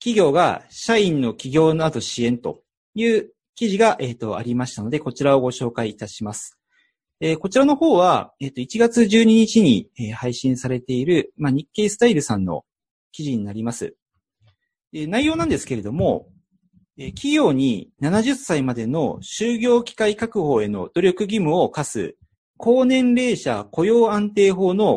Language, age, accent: Japanese, 40-59, native